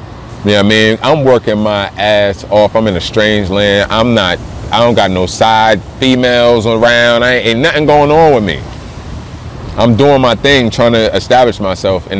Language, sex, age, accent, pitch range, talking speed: English, male, 30-49, American, 95-115 Hz, 190 wpm